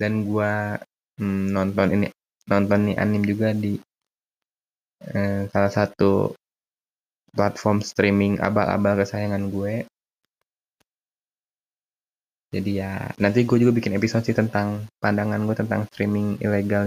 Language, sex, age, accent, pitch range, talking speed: Indonesian, male, 20-39, native, 100-105 Hz, 110 wpm